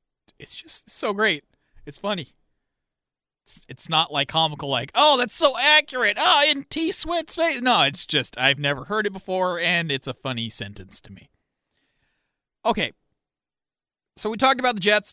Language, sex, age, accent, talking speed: English, male, 30-49, American, 165 wpm